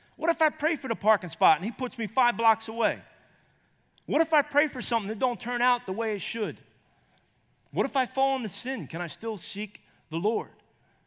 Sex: male